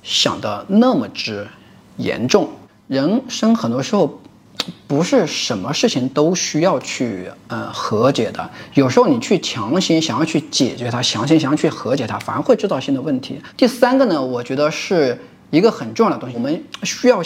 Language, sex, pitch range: Chinese, male, 145-220 Hz